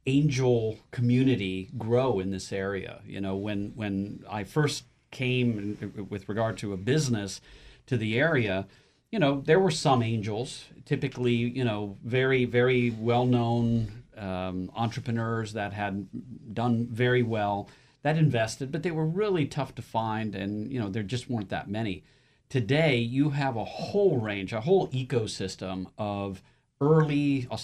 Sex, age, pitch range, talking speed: male, 40-59, 105-130 Hz, 150 wpm